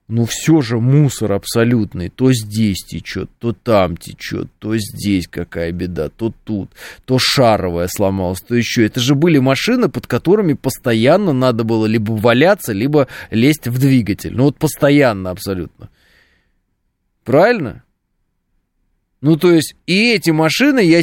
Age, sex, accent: 20-39, male, native